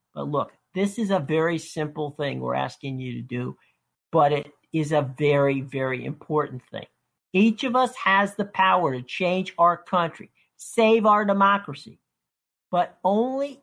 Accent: American